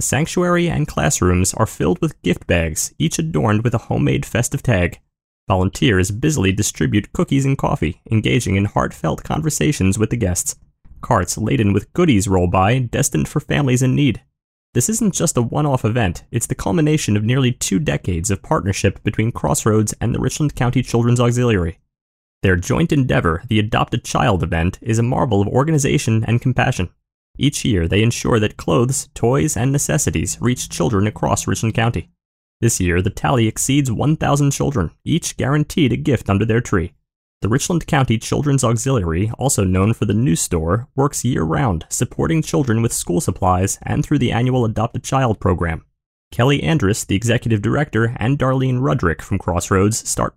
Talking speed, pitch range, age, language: 165 wpm, 95-135 Hz, 20-39, English